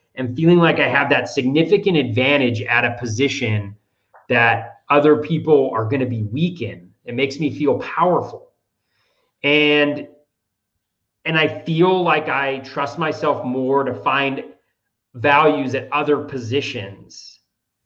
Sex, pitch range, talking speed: male, 115-145 Hz, 135 wpm